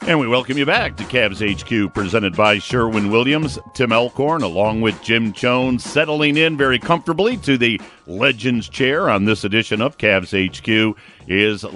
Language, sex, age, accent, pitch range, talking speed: English, male, 50-69, American, 100-135 Hz, 165 wpm